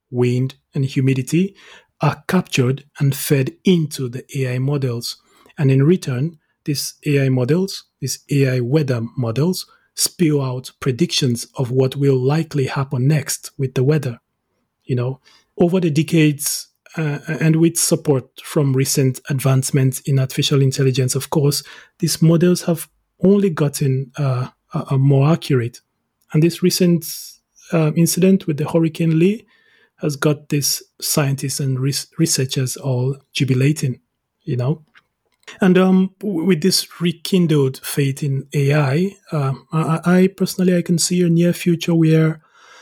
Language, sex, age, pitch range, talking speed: English, male, 30-49, 135-165 Hz, 135 wpm